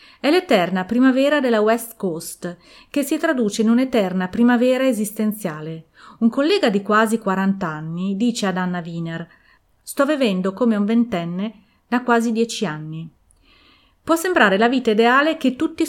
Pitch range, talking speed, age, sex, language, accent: 185-245 Hz, 145 wpm, 30-49, female, Italian, native